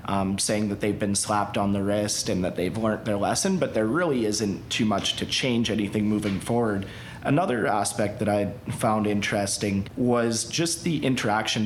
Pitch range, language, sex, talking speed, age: 100-120 Hz, English, male, 185 wpm, 30-49